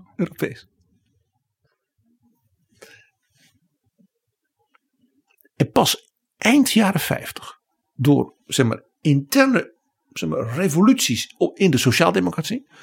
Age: 60-79